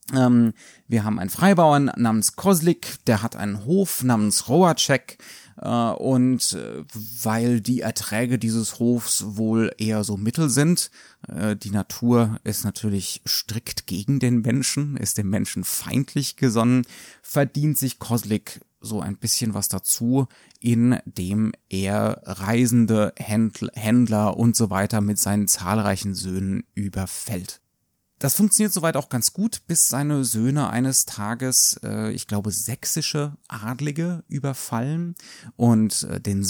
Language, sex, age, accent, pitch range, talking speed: German, male, 30-49, German, 110-140 Hz, 130 wpm